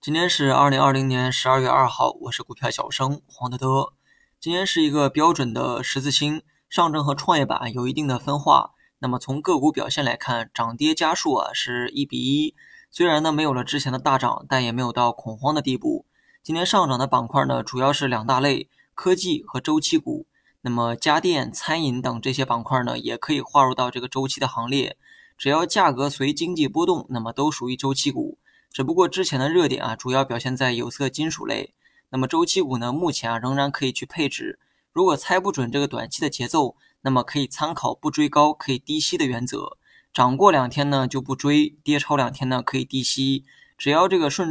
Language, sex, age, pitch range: Chinese, male, 20-39, 130-155 Hz